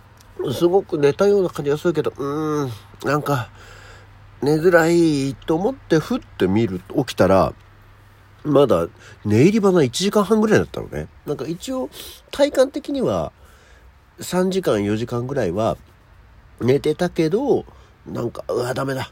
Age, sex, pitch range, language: 50-69, male, 95-165 Hz, Japanese